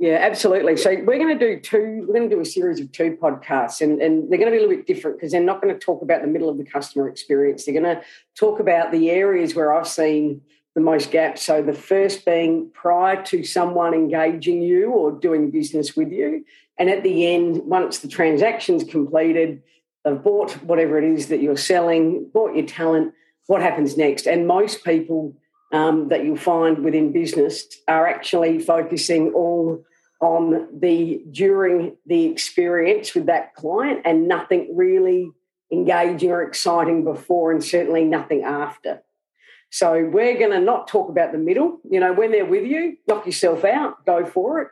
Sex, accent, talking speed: female, Australian, 190 wpm